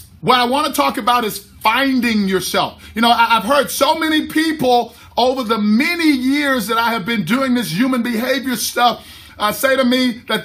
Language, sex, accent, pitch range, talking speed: English, male, American, 220-275 Hz, 195 wpm